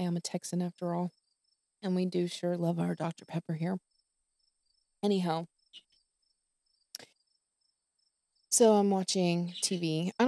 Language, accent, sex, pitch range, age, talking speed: English, American, female, 165-195 Hz, 20-39, 125 wpm